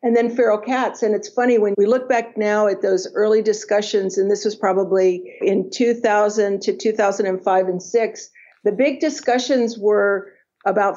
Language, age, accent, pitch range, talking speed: English, 50-69, American, 190-225 Hz, 170 wpm